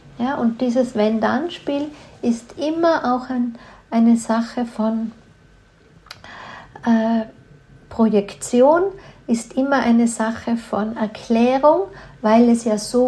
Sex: female